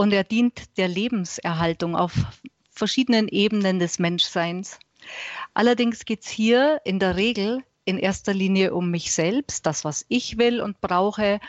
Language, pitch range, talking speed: German, 180-230 Hz, 150 wpm